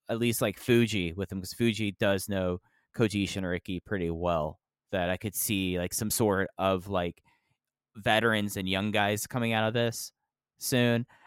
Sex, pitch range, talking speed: male, 90-115 Hz, 170 wpm